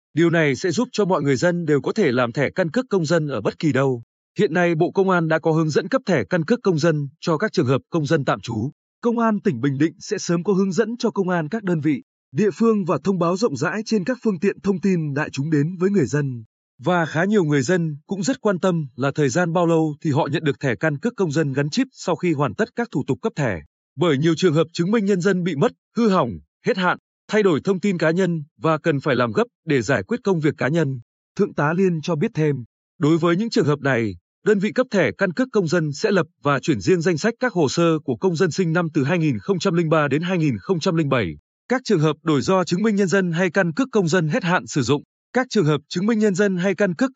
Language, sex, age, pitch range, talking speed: Vietnamese, male, 20-39, 150-200 Hz, 270 wpm